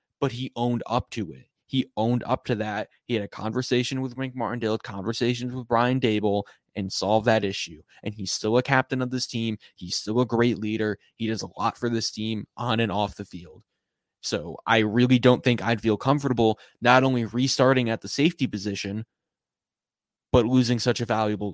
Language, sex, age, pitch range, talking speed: English, male, 20-39, 110-135 Hz, 200 wpm